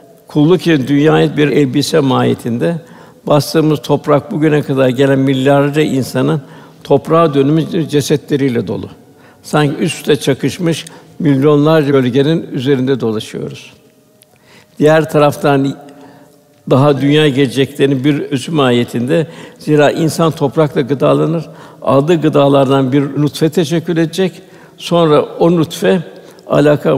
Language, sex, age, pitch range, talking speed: Turkish, male, 60-79, 130-150 Hz, 100 wpm